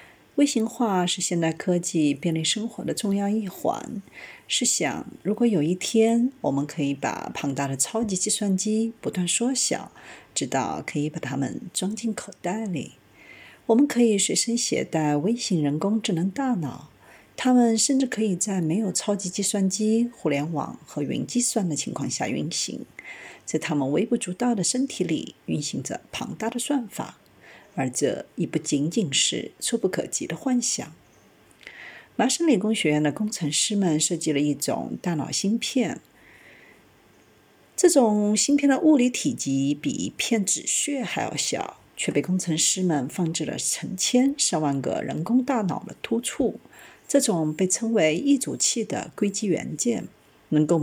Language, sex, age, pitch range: Chinese, female, 50-69, 160-235 Hz